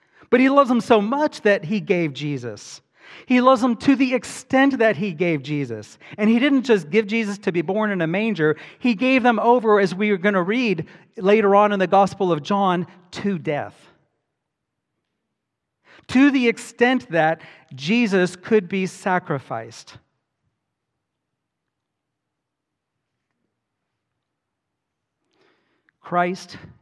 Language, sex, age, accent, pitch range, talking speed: English, male, 40-59, American, 130-200 Hz, 135 wpm